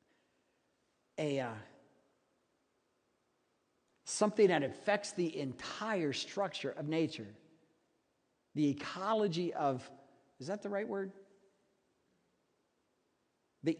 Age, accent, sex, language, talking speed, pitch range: 50-69, American, male, English, 85 wpm, 165-225 Hz